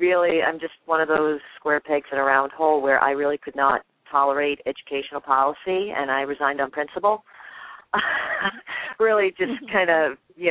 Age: 40-59